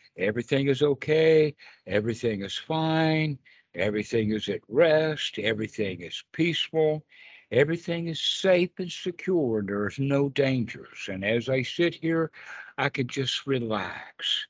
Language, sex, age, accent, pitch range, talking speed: English, male, 60-79, American, 110-155 Hz, 125 wpm